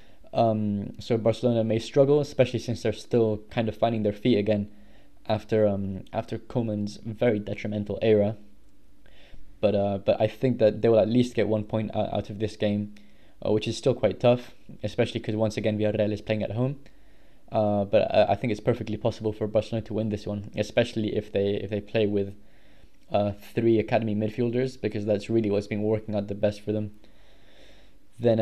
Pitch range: 105-115 Hz